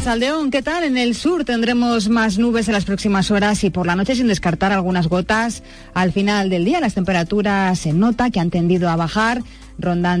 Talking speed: 205 wpm